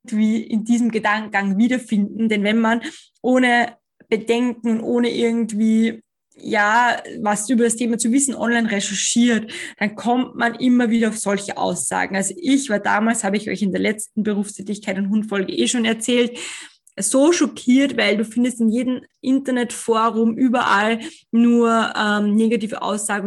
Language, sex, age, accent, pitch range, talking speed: German, female, 20-39, German, 210-240 Hz, 145 wpm